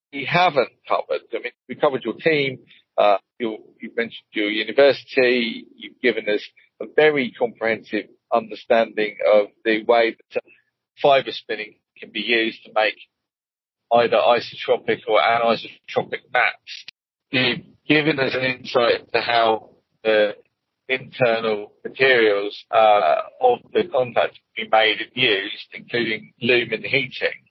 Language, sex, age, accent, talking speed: English, male, 40-59, British, 135 wpm